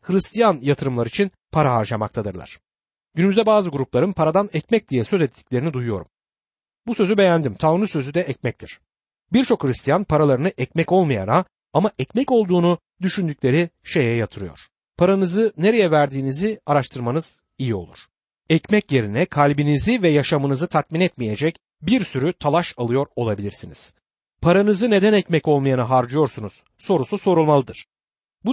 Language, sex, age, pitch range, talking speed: Turkish, male, 60-79, 125-195 Hz, 120 wpm